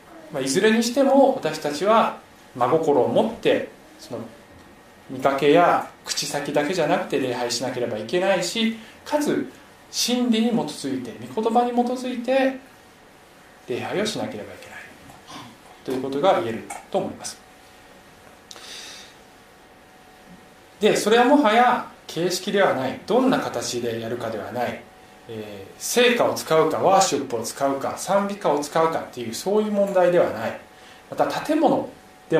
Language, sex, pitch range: Japanese, male, 140-230 Hz